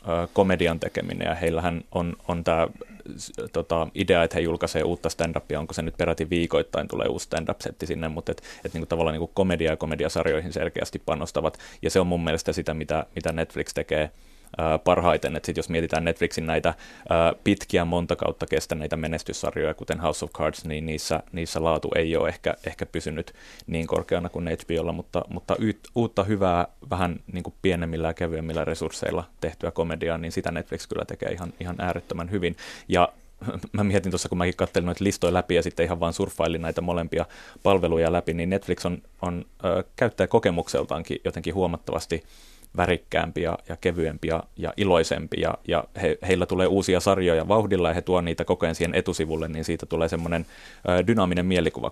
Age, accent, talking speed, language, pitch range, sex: 30-49, native, 175 wpm, Finnish, 80-90 Hz, male